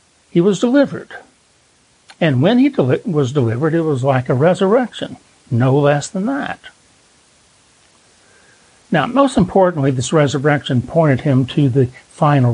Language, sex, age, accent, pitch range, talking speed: English, male, 60-79, American, 130-180 Hz, 130 wpm